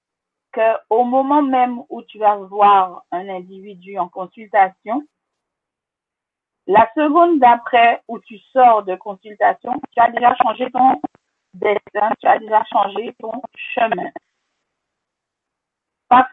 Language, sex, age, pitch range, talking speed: French, female, 50-69, 225-290 Hz, 120 wpm